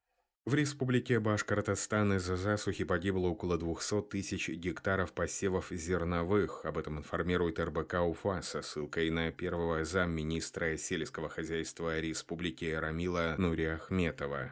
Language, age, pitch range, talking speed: Russian, 30-49, 80-95 Hz, 115 wpm